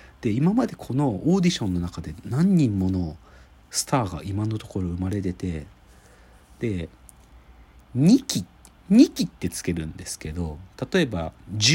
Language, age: Japanese, 40-59